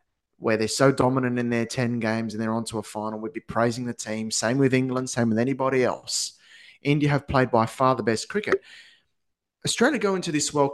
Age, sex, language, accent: 20-39, male, English, Australian